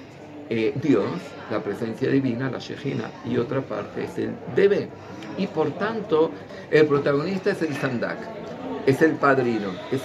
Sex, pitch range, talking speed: male, 120-155 Hz, 150 wpm